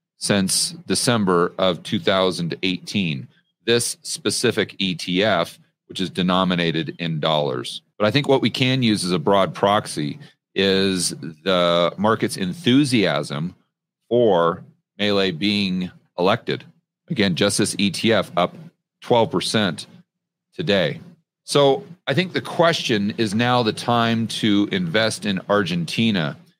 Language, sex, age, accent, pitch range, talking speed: English, male, 40-59, American, 95-160 Hz, 115 wpm